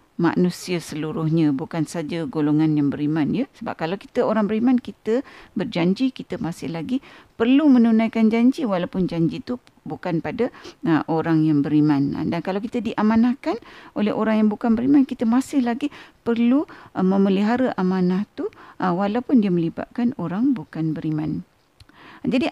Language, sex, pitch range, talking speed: Malay, female, 170-255 Hz, 145 wpm